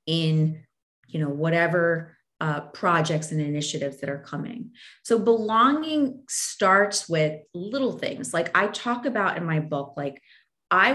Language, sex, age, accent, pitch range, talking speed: English, female, 30-49, American, 150-215 Hz, 145 wpm